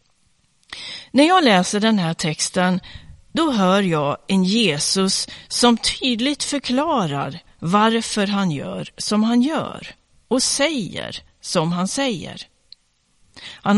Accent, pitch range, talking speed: native, 175-245 Hz, 115 wpm